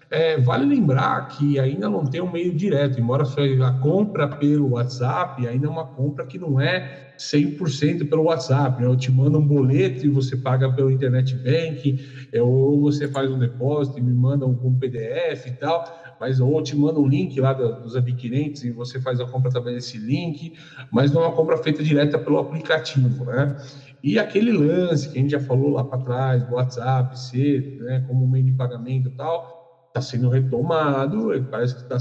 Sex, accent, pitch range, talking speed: male, Brazilian, 130-145 Hz, 195 wpm